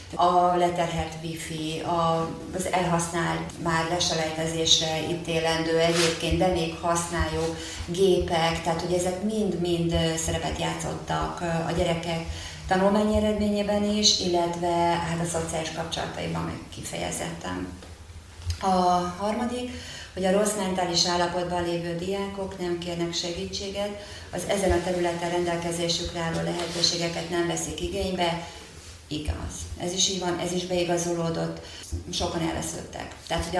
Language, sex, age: Hungarian, female, 30-49